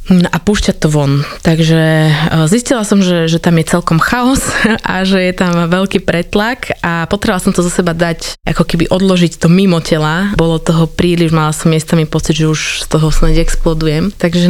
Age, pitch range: 20-39, 160-190 Hz